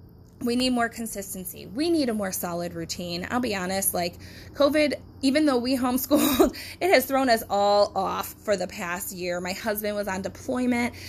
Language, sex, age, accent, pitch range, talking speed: English, female, 20-39, American, 175-240 Hz, 185 wpm